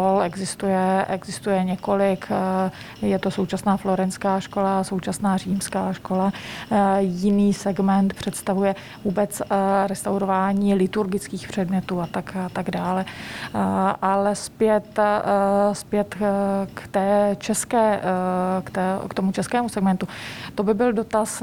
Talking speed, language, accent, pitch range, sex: 95 wpm, Czech, native, 195-210 Hz, female